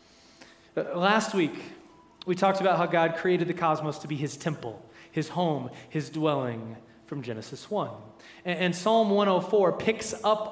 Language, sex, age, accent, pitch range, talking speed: English, male, 20-39, American, 135-185 Hz, 155 wpm